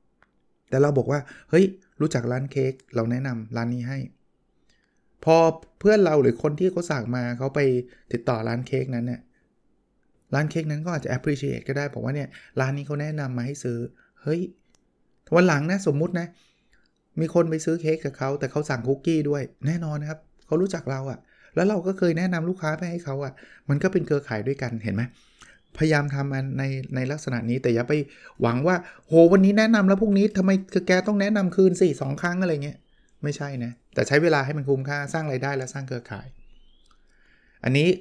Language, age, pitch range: Thai, 20-39, 125-160 Hz